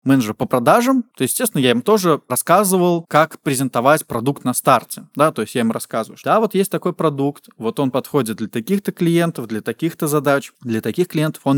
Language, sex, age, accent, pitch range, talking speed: Russian, male, 20-39, native, 120-165 Hz, 200 wpm